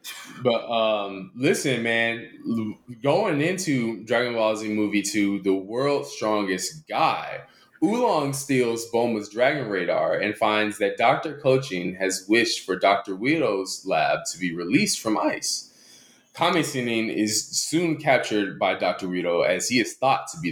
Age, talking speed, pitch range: 20-39, 145 wpm, 105-145 Hz